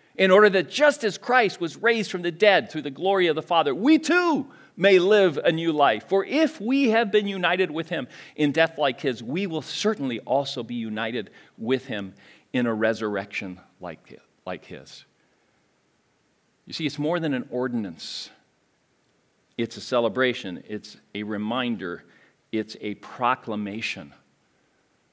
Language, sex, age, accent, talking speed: English, male, 50-69, American, 160 wpm